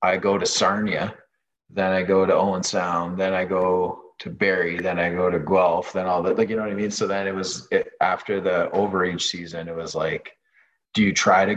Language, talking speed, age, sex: English, 235 wpm, 30-49, male